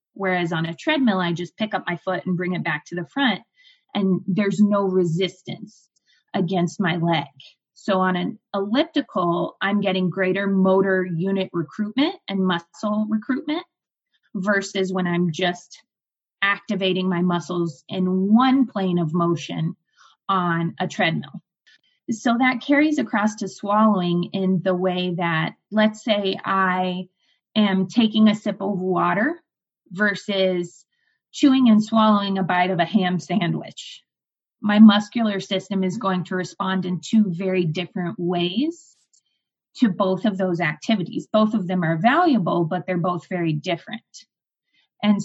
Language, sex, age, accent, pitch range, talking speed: English, female, 20-39, American, 180-215 Hz, 145 wpm